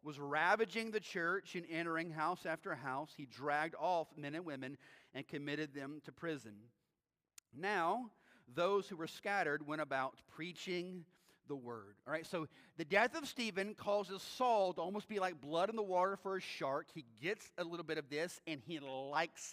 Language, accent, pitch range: English, American, 155-205 Hz